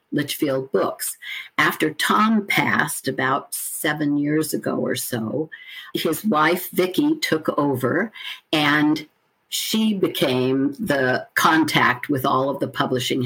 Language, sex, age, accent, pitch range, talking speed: English, female, 60-79, American, 135-200 Hz, 120 wpm